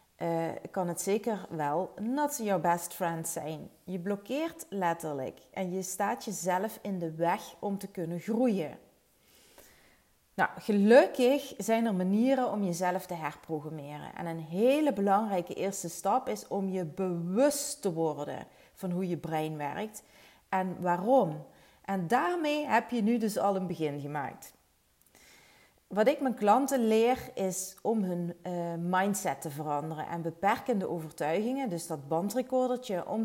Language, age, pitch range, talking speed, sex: Dutch, 30-49, 170-220 Hz, 145 wpm, female